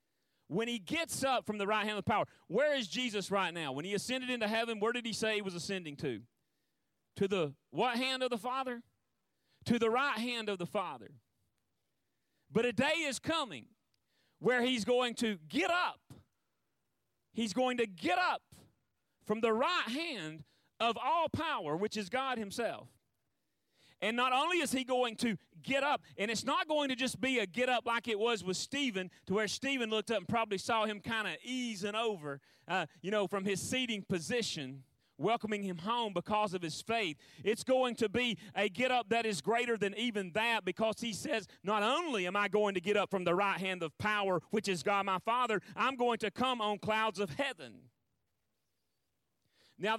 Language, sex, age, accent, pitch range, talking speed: English, male, 40-59, American, 195-245 Hz, 200 wpm